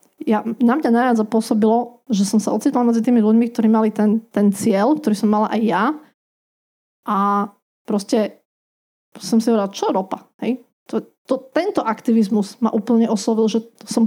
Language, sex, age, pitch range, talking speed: Slovak, female, 20-39, 215-245 Hz, 160 wpm